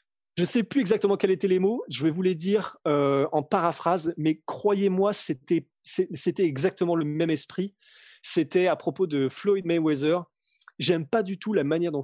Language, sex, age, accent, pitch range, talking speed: French, male, 20-39, French, 145-185 Hz, 190 wpm